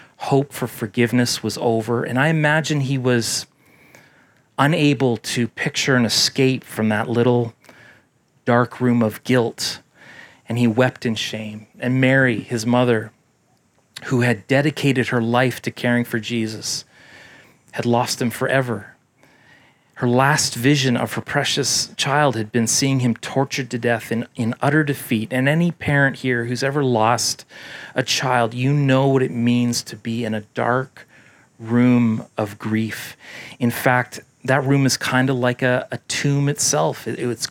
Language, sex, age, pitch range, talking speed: English, male, 30-49, 115-135 Hz, 155 wpm